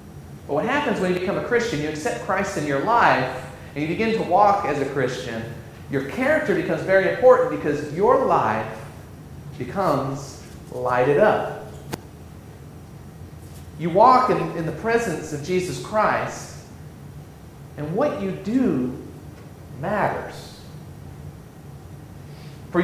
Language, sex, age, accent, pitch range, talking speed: English, male, 40-59, American, 145-190 Hz, 125 wpm